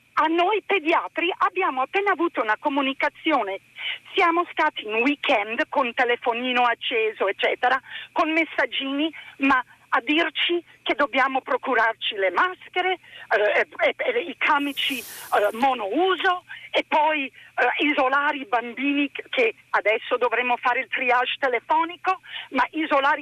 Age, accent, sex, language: 40-59, native, female, Italian